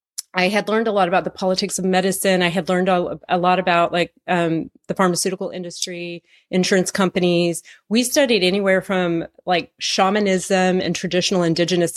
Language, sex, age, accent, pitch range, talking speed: English, female, 30-49, American, 170-200 Hz, 160 wpm